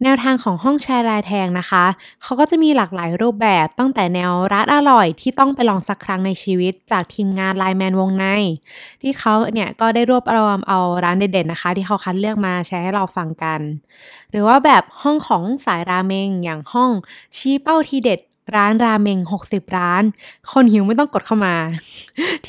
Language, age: Thai, 20-39